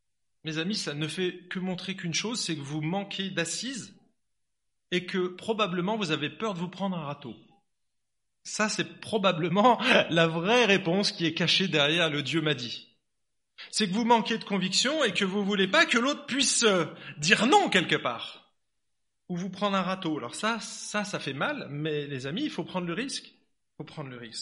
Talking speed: 205 wpm